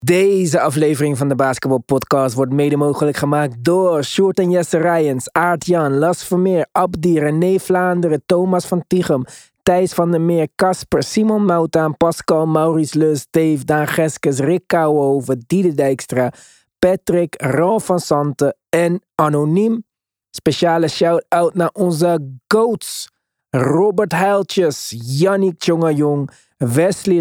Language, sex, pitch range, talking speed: Dutch, male, 135-175 Hz, 125 wpm